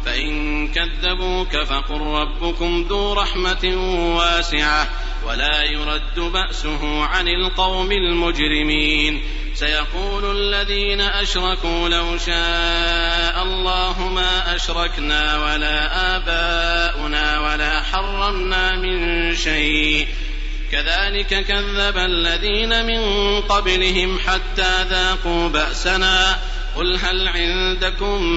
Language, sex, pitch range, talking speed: Arabic, male, 150-185 Hz, 80 wpm